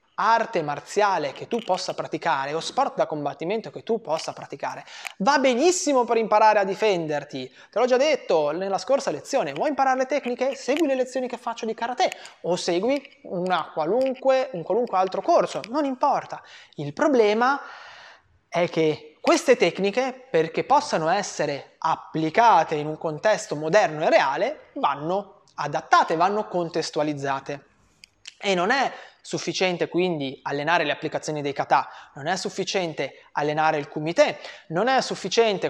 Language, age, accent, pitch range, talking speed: Italian, 20-39, native, 155-245 Hz, 145 wpm